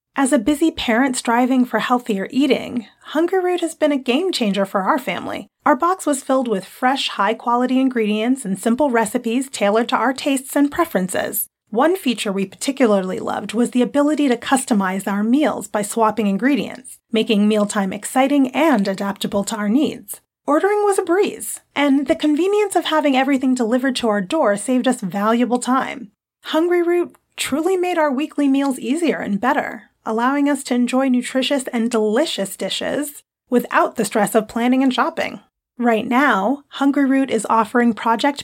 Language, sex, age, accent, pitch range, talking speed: English, female, 30-49, American, 225-285 Hz, 170 wpm